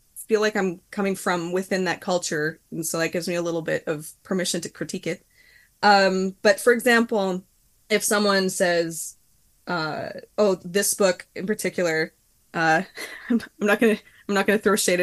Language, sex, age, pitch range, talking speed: English, female, 20-39, 165-210 Hz, 175 wpm